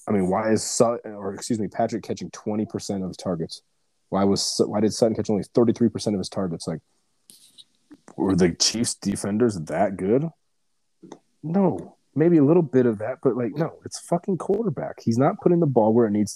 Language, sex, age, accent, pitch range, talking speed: English, male, 30-49, American, 100-130 Hz, 195 wpm